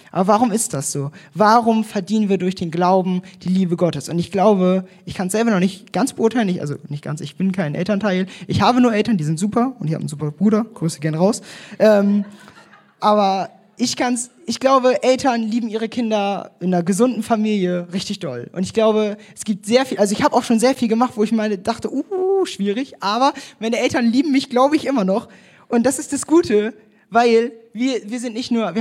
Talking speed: 225 wpm